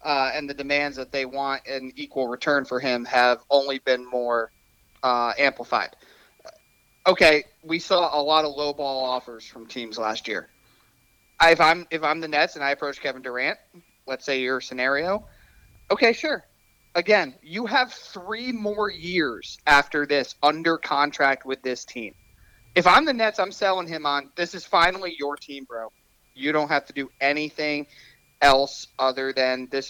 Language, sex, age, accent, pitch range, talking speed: English, male, 30-49, American, 130-145 Hz, 175 wpm